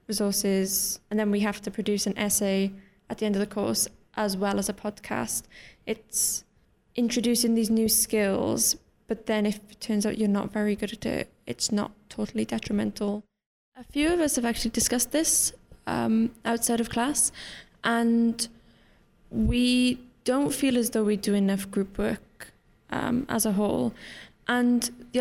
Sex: female